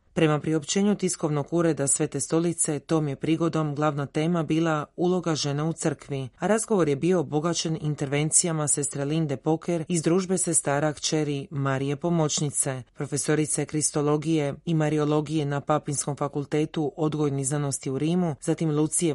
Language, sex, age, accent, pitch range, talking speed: Croatian, female, 30-49, native, 145-165 Hz, 140 wpm